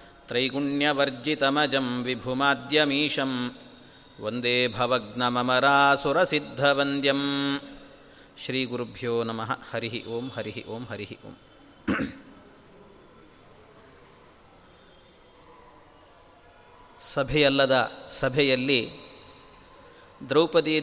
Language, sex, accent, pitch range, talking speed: Kannada, male, native, 140-215 Hz, 45 wpm